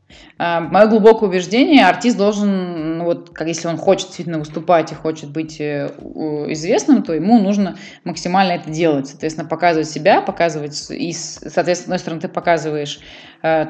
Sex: female